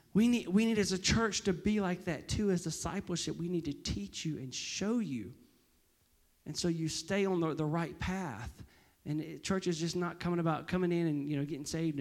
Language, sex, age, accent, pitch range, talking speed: English, male, 40-59, American, 130-180 Hz, 230 wpm